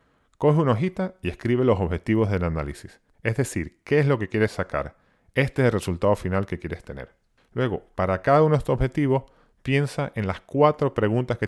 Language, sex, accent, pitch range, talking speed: Spanish, male, American, 90-130 Hz, 200 wpm